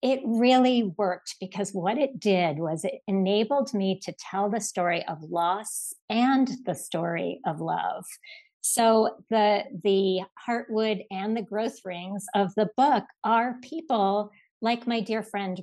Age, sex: 50-69, female